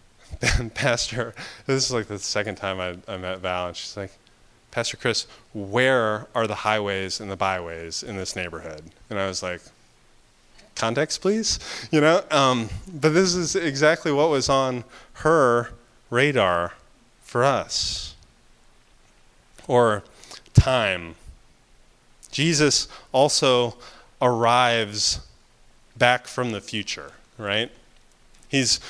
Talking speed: 120 wpm